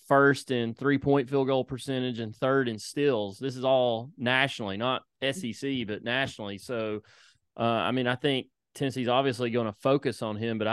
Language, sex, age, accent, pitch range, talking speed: English, male, 30-49, American, 110-130 Hz, 180 wpm